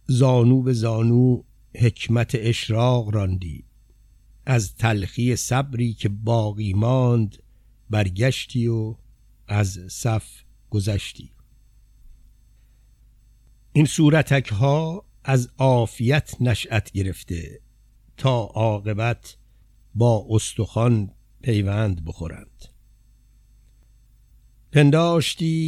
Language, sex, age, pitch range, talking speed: Persian, male, 60-79, 105-120 Hz, 70 wpm